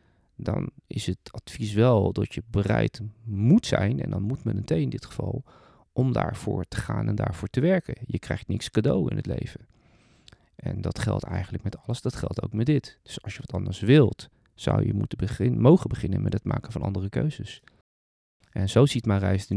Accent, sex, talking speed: Dutch, male, 210 wpm